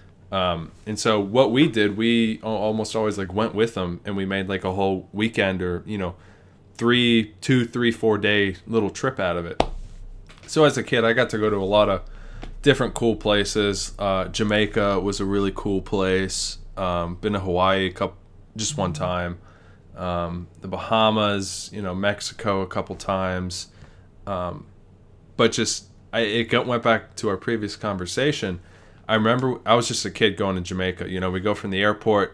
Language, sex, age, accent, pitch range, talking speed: English, male, 20-39, American, 90-110 Hz, 185 wpm